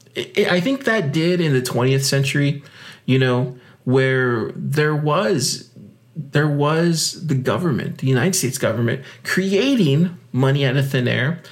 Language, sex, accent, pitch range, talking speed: English, male, American, 130-175 Hz, 140 wpm